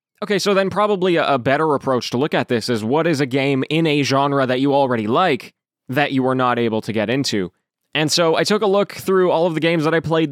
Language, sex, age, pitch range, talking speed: English, male, 20-39, 130-165 Hz, 260 wpm